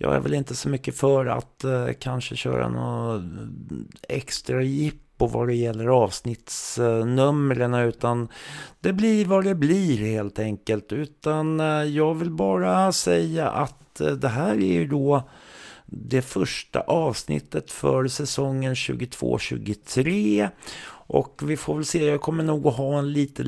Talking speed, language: 140 wpm, Swedish